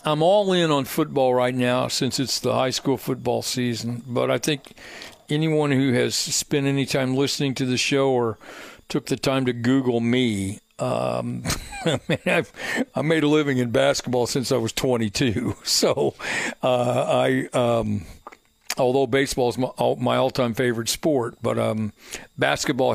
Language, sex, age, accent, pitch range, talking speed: English, male, 60-79, American, 125-145 Hz, 160 wpm